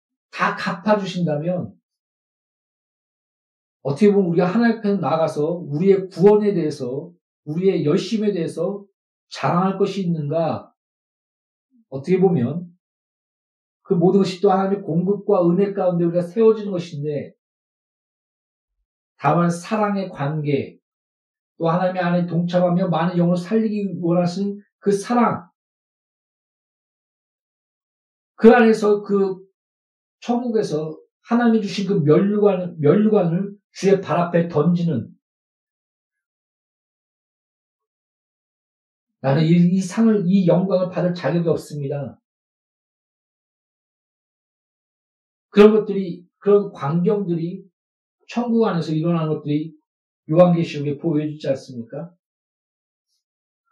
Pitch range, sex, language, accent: 165-205 Hz, male, Korean, native